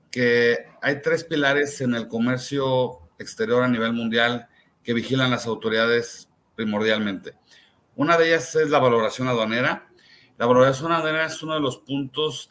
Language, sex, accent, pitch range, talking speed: Spanish, male, Mexican, 110-140 Hz, 150 wpm